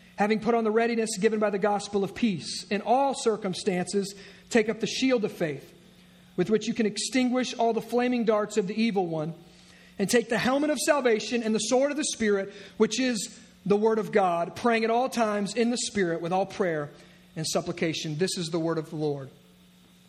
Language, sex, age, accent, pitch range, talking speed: English, male, 40-59, American, 190-240 Hz, 210 wpm